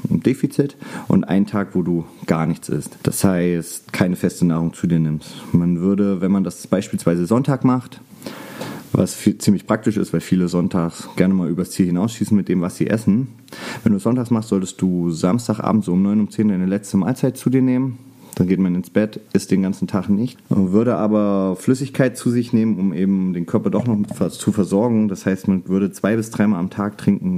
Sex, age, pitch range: male, 30-49, 95-120 Hz